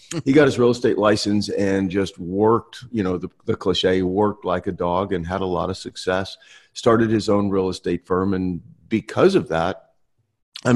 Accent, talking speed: American, 195 wpm